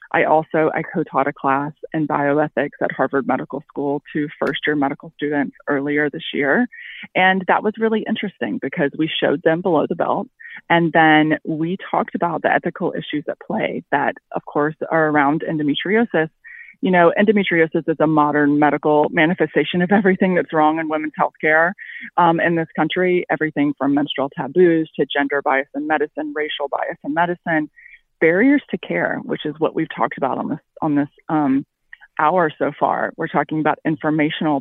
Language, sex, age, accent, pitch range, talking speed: English, female, 20-39, American, 150-180 Hz, 175 wpm